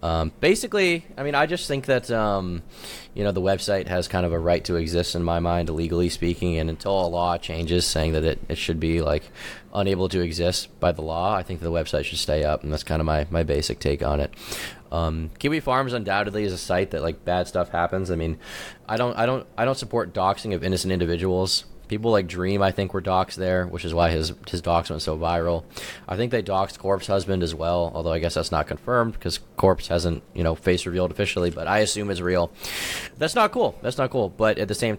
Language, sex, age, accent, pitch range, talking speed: English, male, 20-39, American, 85-100 Hz, 240 wpm